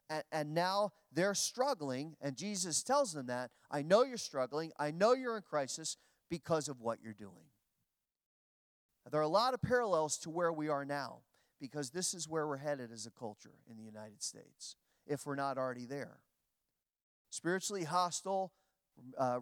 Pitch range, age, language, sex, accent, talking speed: 130-185 Hz, 40-59, English, male, American, 170 wpm